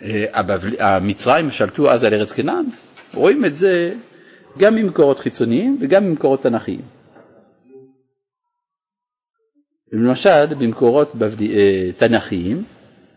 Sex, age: male, 50-69